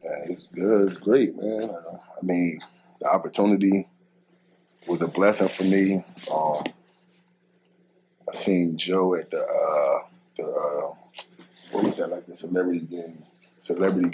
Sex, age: male, 20-39